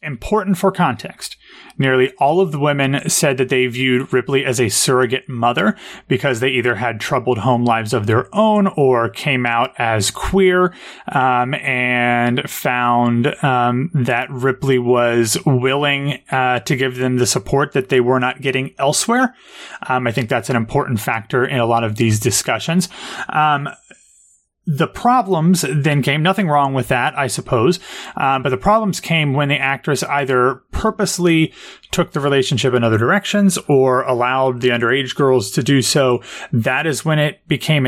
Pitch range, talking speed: 125-155 Hz, 165 wpm